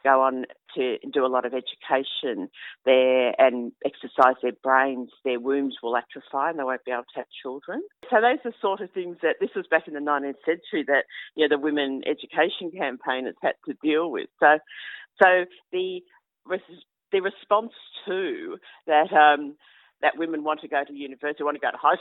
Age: 50-69